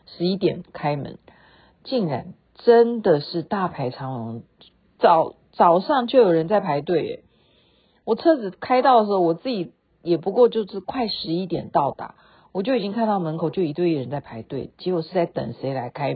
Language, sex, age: Chinese, female, 50-69